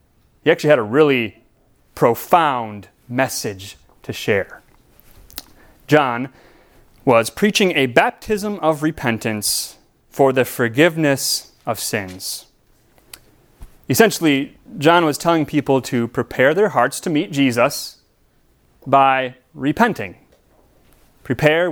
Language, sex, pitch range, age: English, male, 115-150 Hz, 30-49